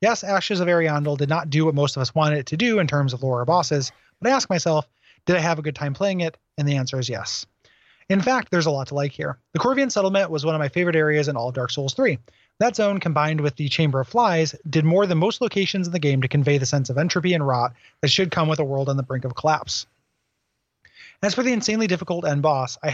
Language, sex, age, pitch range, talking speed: English, male, 30-49, 140-180 Hz, 270 wpm